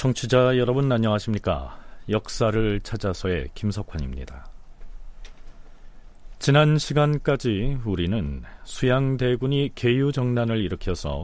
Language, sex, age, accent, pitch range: Korean, male, 40-59, native, 85-130 Hz